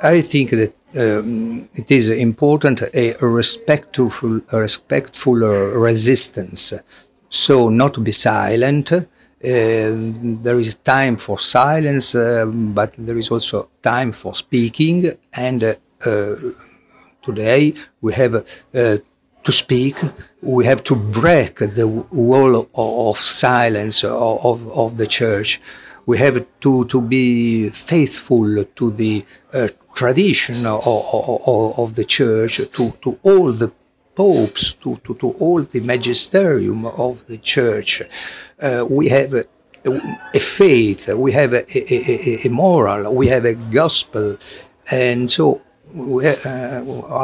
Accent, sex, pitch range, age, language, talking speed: Italian, male, 115-135 Hz, 50-69, English, 125 wpm